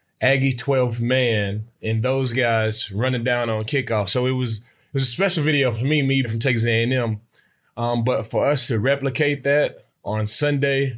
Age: 20-39